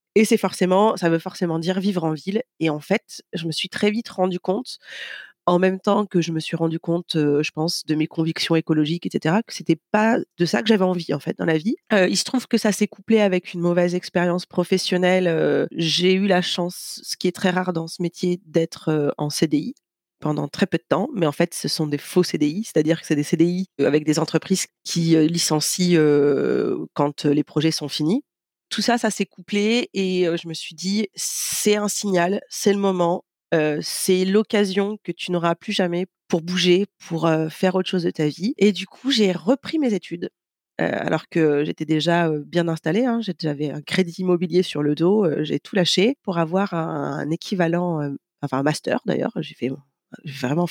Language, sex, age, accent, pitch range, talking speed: French, female, 30-49, French, 160-200 Hz, 220 wpm